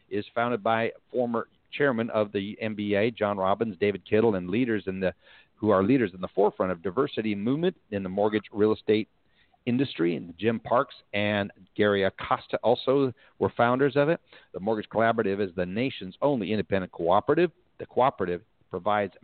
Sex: male